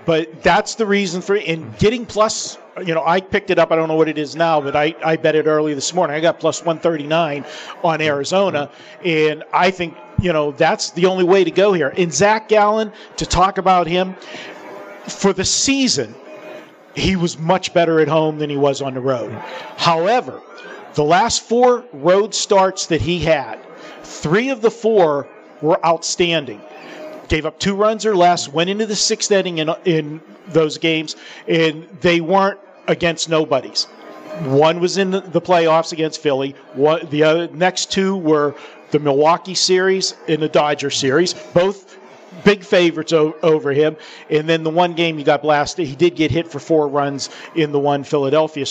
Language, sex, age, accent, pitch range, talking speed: English, male, 40-59, American, 155-190 Hz, 185 wpm